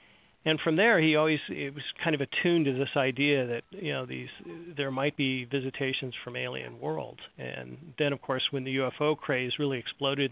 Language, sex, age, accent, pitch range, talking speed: English, male, 40-59, American, 125-150 Hz, 200 wpm